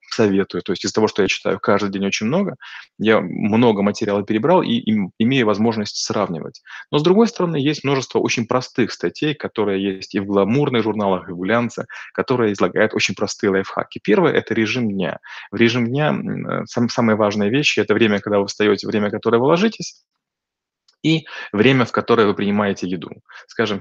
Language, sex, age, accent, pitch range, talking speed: Russian, male, 20-39, native, 105-125 Hz, 185 wpm